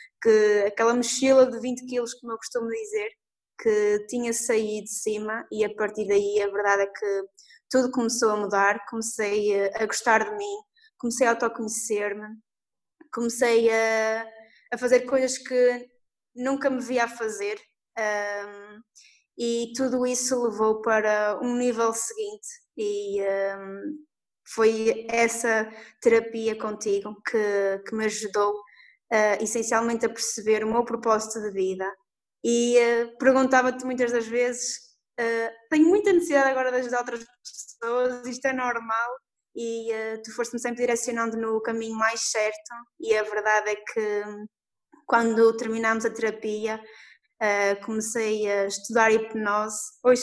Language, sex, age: Portuguese, female, 20-39